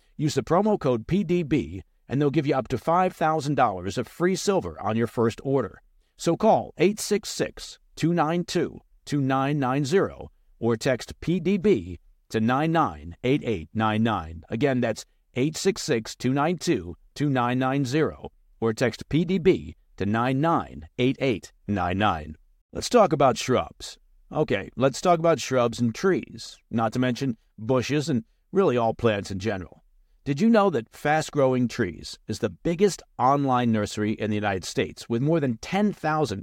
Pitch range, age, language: 115-160 Hz, 50-69, English